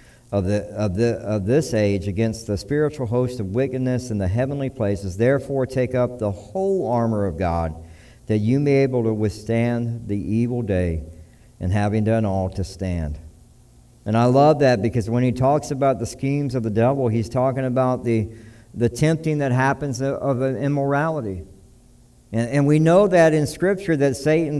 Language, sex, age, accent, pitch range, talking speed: English, male, 60-79, American, 115-140 Hz, 185 wpm